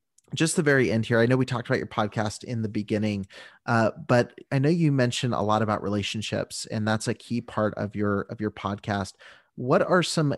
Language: English